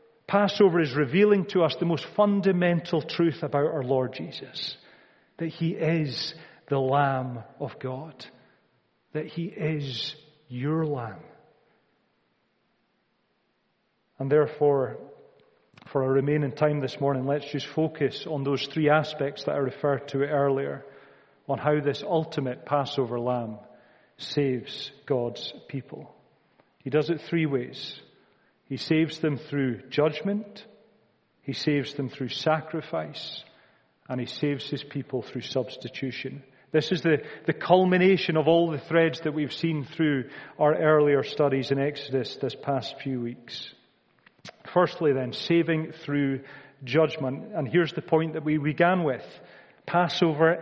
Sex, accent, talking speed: male, British, 135 wpm